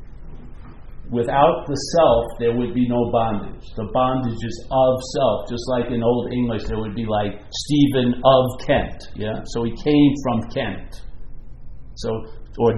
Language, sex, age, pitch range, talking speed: English, male, 50-69, 115-145 Hz, 155 wpm